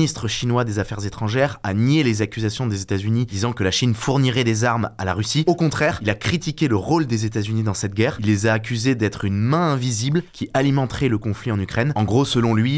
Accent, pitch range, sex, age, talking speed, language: French, 105-135 Hz, male, 20-39, 250 wpm, French